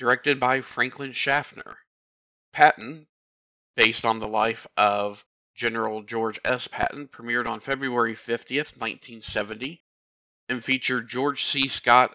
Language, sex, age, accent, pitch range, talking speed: English, male, 40-59, American, 110-125 Hz, 120 wpm